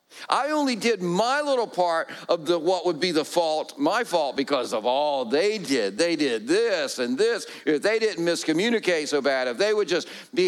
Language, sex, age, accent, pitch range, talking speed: English, male, 50-69, American, 190-255 Hz, 205 wpm